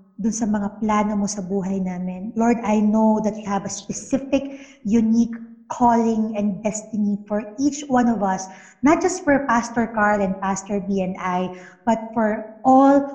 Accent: Filipino